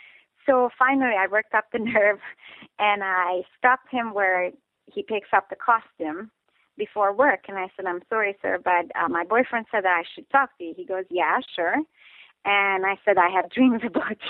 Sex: female